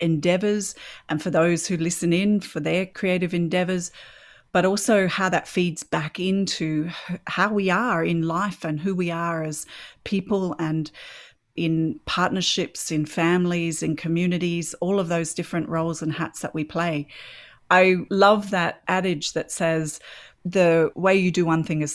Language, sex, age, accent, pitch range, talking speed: English, female, 30-49, Australian, 155-185 Hz, 160 wpm